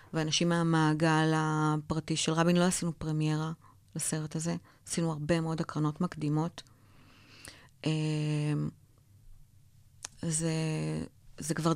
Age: 30-49